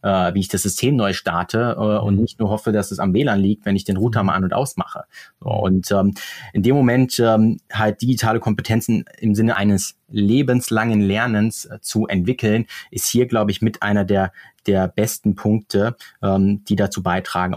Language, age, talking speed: German, 30-49, 170 wpm